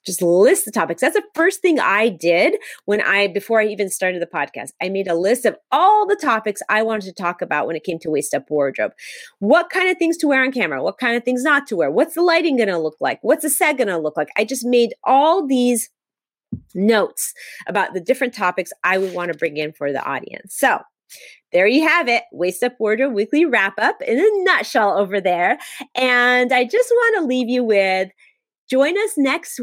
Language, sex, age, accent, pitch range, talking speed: English, female, 30-49, American, 185-275 Hz, 225 wpm